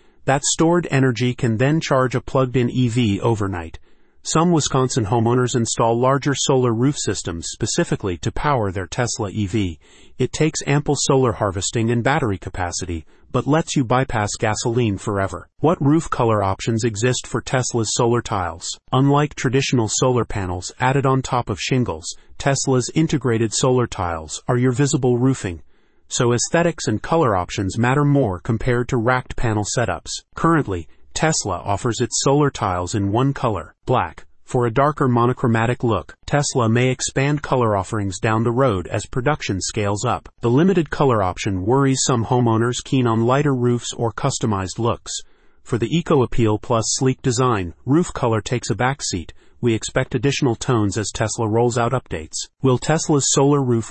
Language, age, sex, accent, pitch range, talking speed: English, 30-49, male, American, 110-135 Hz, 155 wpm